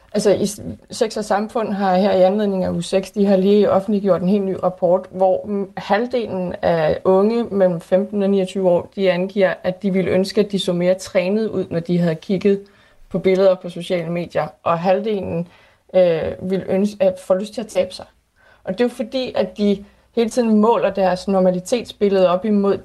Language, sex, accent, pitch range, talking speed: Danish, female, native, 185-215 Hz, 195 wpm